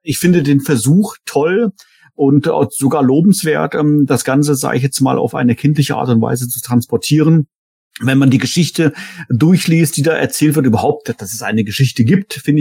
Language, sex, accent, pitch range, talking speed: German, male, German, 120-145 Hz, 180 wpm